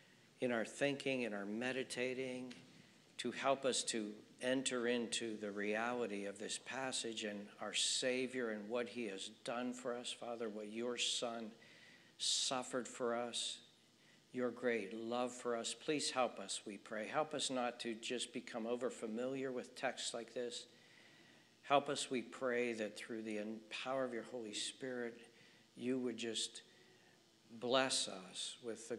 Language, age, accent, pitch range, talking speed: English, 60-79, American, 110-120 Hz, 155 wpm